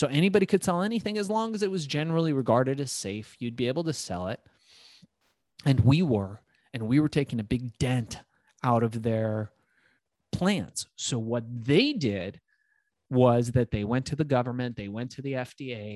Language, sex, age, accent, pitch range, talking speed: English, male, 30-49, American, 120-155 Hz, 190 wpm